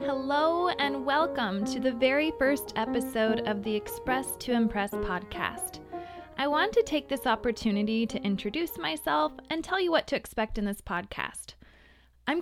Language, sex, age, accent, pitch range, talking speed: English, female, 20-39, American, 210-285 Hz, 160 wpm